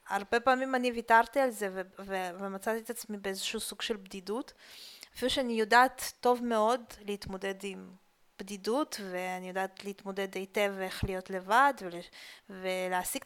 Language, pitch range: Hebrew, 185-230 Hz